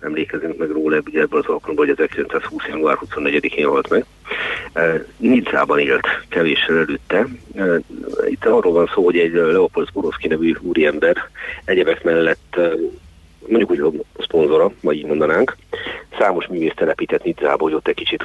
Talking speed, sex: 140 wpm, male